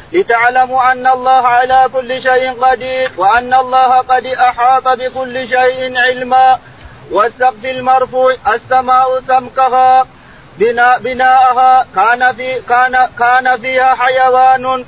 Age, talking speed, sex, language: 40-59, 100 wpm, male, Arabic